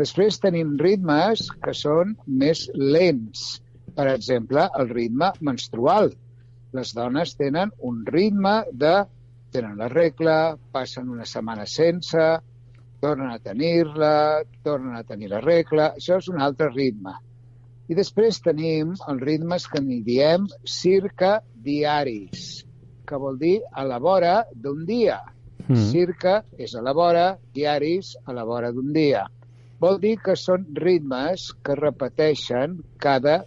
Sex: male